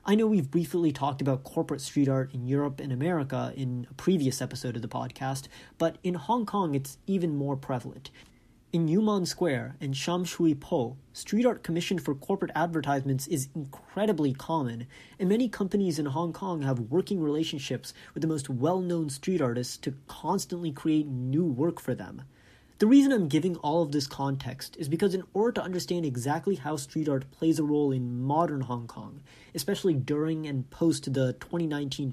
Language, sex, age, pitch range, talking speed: English, male, 30-49, 135-170 Hz, 180 wpm